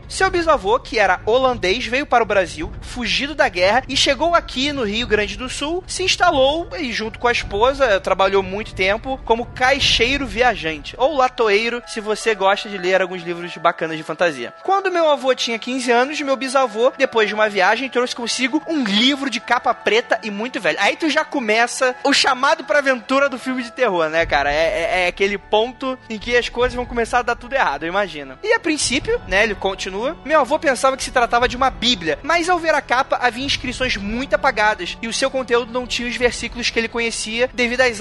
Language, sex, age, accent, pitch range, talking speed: Portuguese, male, 20-39, Brazilian, 220-280 Hz, 215 wpm